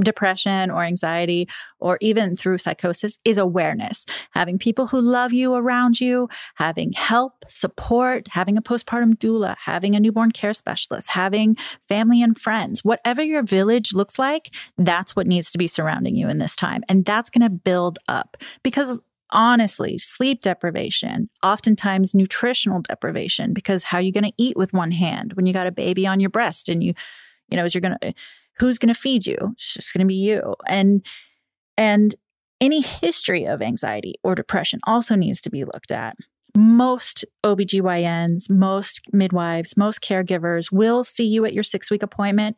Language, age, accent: English, 30-49, American